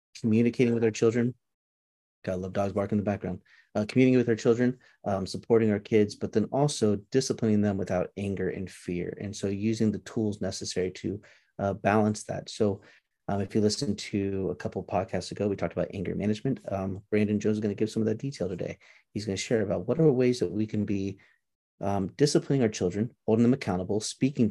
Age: 30-49